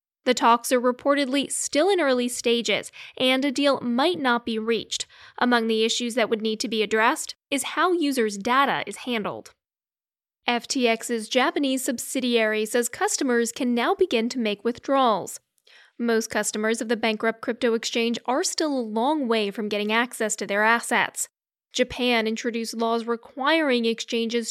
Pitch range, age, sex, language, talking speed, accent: 225-270 Hz, 10-29, female, English, 155 wpm, American